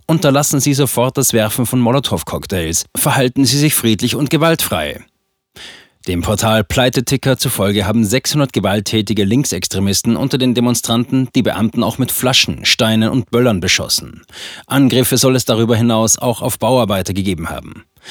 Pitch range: 105-130 Hz